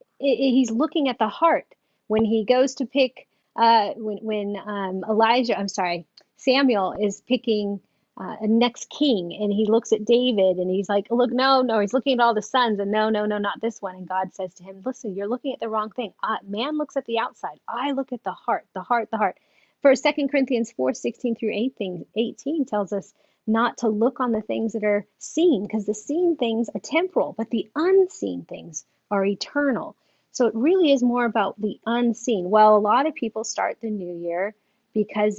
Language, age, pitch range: English, 30-49, 205-260 Hz